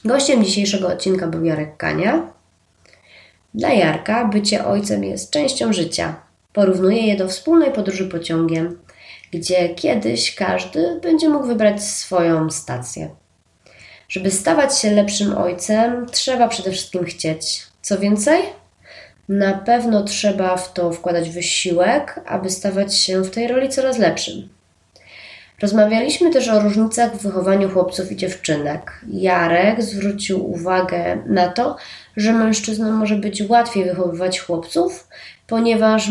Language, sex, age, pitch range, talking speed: Polish, female, 20-39, 175-215 Hz, 125 wpm